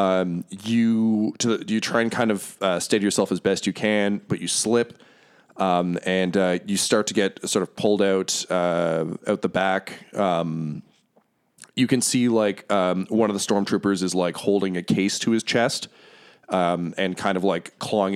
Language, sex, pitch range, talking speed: English, male, 95-105 Hz, 190 wpm